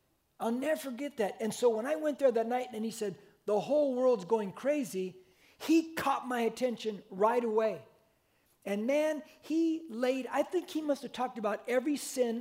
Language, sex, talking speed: English, male, 190 wpm